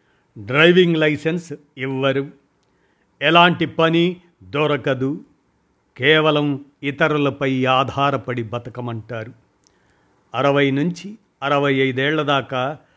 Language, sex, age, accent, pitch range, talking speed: Telugu, male, 50-69, native, 130-160 Hz, 70 wpm